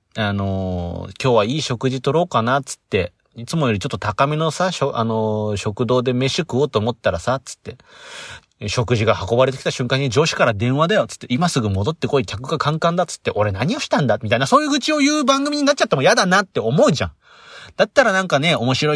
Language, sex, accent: Japanese, male, native